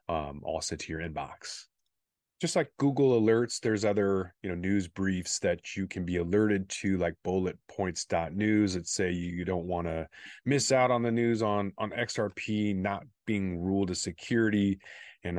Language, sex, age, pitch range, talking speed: English, male, 30-49, 85-110 Hz, 175 wpm